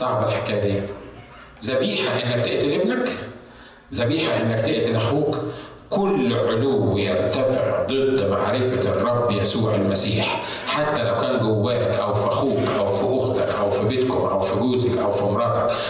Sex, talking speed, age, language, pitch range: male, 145 wpm, 50-69, Arabic, 110-150 Hz